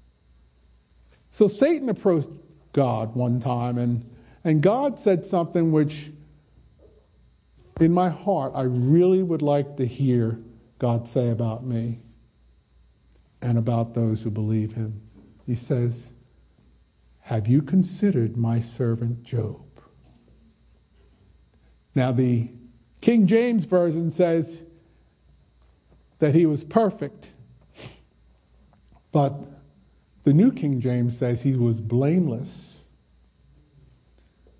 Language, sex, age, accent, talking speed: English, male, 50-69, American, 100 wpm